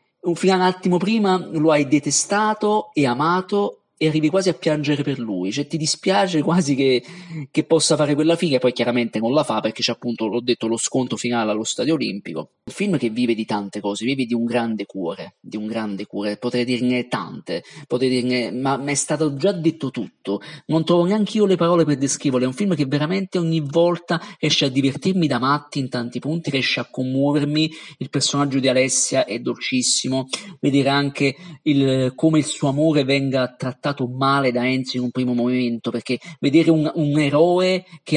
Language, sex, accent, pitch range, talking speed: Italian, male, native, 125-165 Hz, 195 wpm